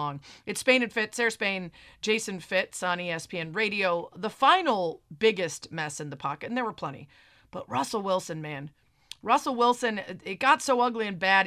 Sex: female